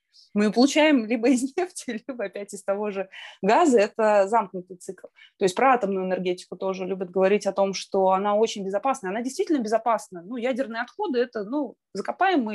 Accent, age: native, 20-39